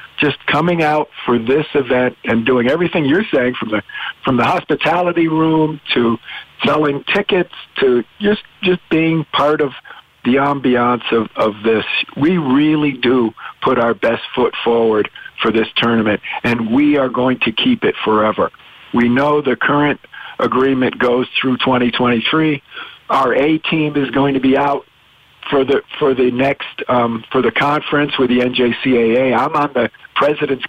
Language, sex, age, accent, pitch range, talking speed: English, male, 50-69, American, 120-145 Hz, 165 wpm